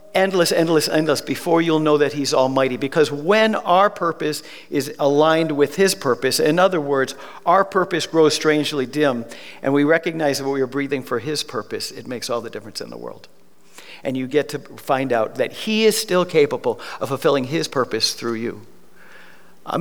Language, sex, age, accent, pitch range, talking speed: English, male, 50-69, American, 140-180 Hz, 190 wpm